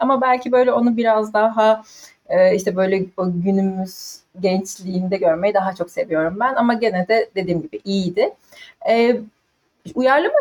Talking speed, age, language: 125 wpm, 30-49, Turkish